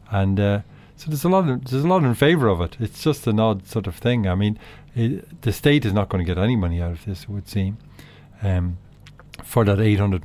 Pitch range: 100-120 Hz